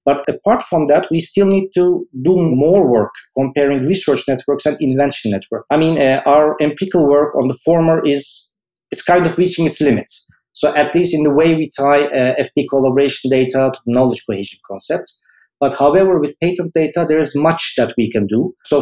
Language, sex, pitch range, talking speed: English, male, 135-160 Hz, 200 wpm